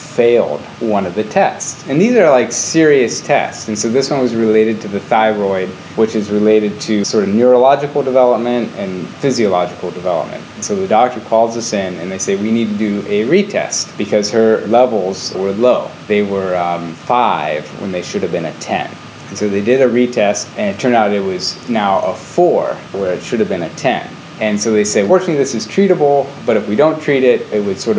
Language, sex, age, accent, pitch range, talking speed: English, male, 30-49, American, 105-130 Hz, 215 wpm